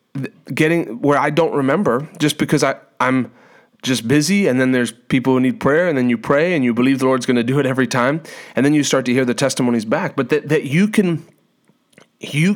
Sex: male